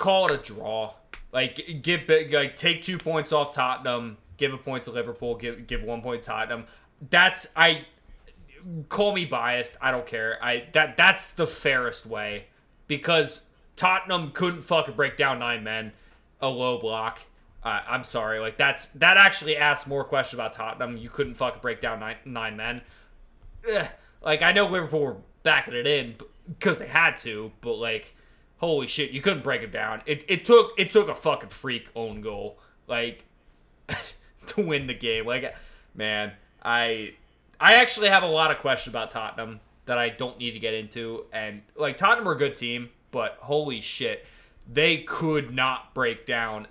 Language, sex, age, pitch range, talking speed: English, male, 20-39, 115-155 Hz, 180 wpm